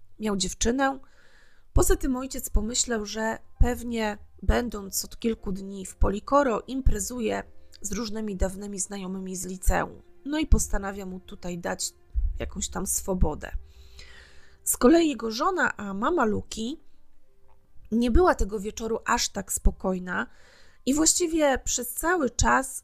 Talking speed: 130 wpm